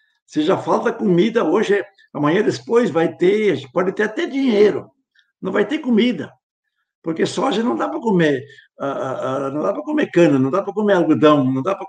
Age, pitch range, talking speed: 60-79, 155-255 Hz, 180 wpm